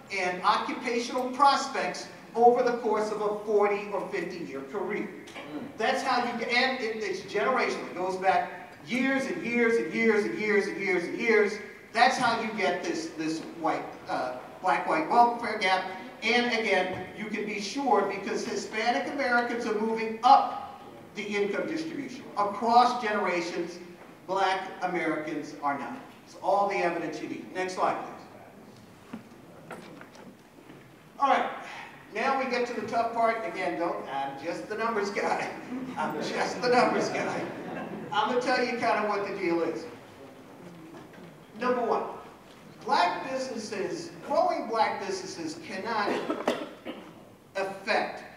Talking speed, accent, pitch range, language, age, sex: 145 wpm, American, 185-245 Hz, English, 50-69, male